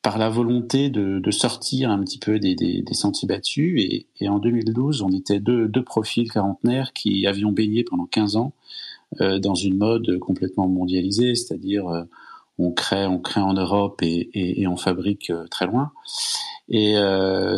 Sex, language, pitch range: male, English, 95-115 Hz